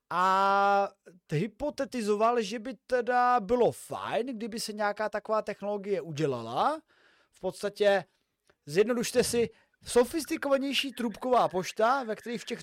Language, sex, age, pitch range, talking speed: Czech, male, 30-49, 180-235 Hz, 115 wpm